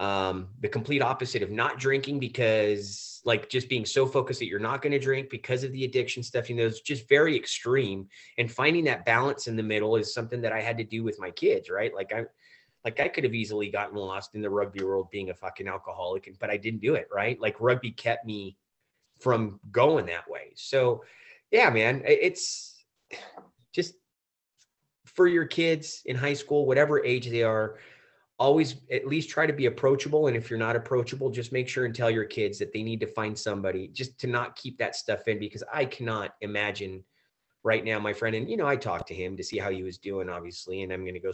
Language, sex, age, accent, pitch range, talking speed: English, male, 30-49, American, 105-135 Hz, 220 wpm